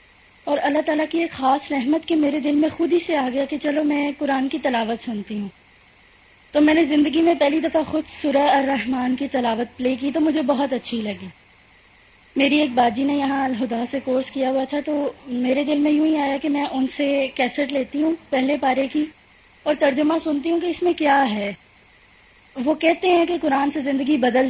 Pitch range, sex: 245-300 Hz, female